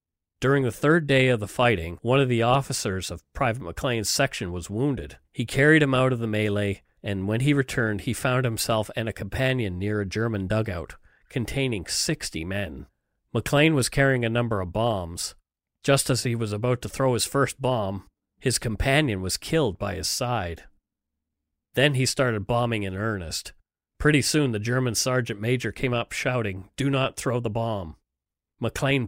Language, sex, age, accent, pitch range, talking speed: English, male, 40-59, American, 100-130 Hz, 180 wpm